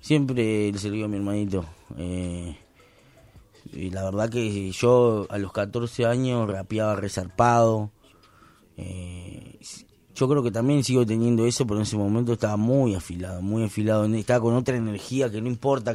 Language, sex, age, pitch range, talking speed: Spanish, male, 20-39, 100-125 Hz, 160 wpm